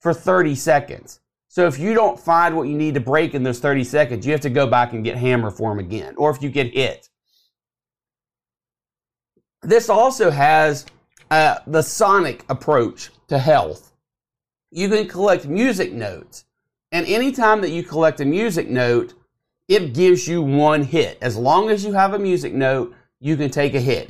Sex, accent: male, American